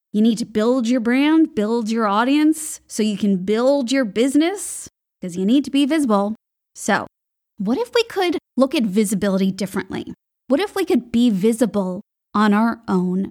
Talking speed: 175 wpm